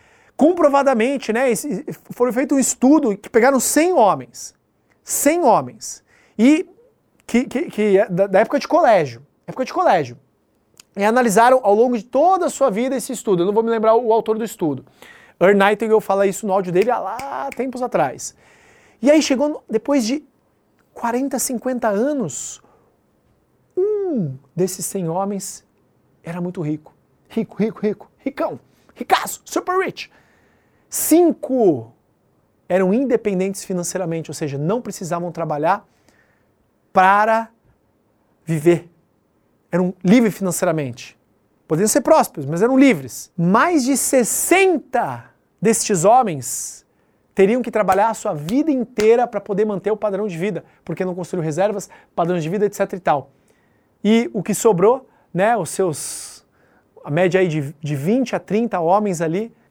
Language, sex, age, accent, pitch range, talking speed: Portuguese, male, 30-49, Brazilian, 180-255 Hz, 145 wpm